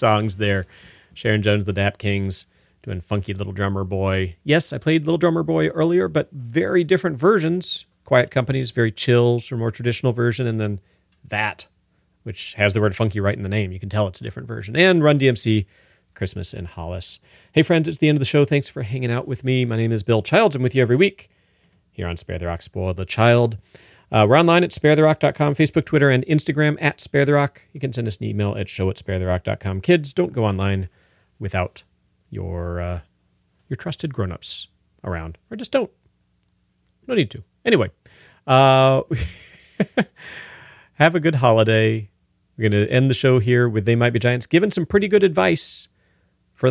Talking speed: 195 wpm